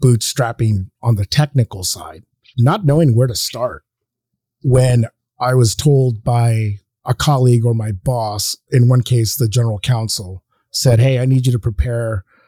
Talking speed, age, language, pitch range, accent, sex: 160 wpm, 30-49, English, 115-135 Hz, American, male